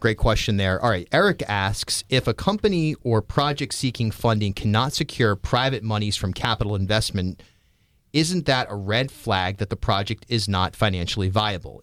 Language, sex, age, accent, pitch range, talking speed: English, male, 30-49, American, 95-120 Hz, 165 wpm